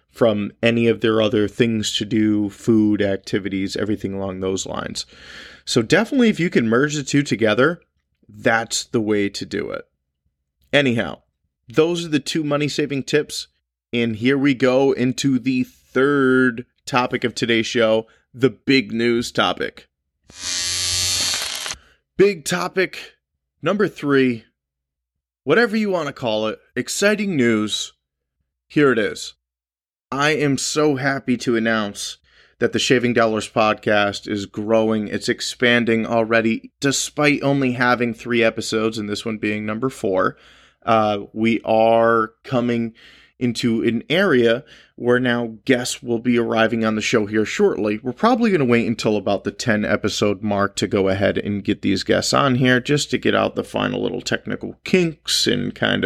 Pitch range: 105-130 Hz